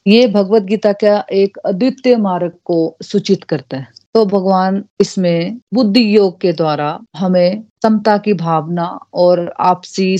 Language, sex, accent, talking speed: Hindi, female, native, 130 wpm